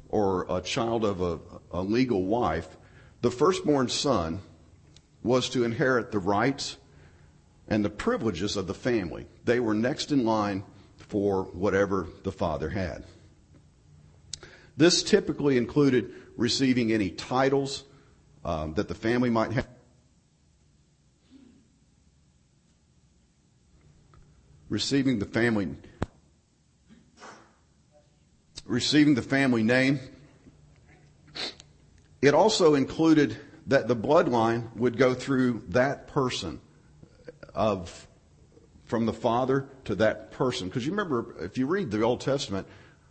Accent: American